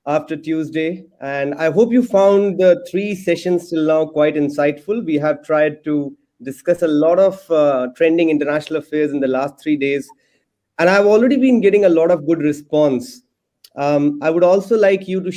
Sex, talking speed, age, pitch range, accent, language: male, 185 wpm, 30-49, 150-185 Hz, Indian, English